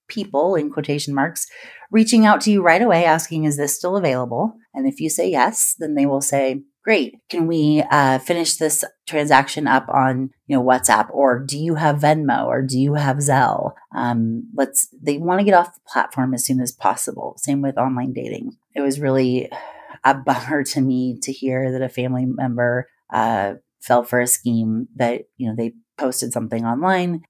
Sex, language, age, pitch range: female, English, 30-49, 125-165 Hz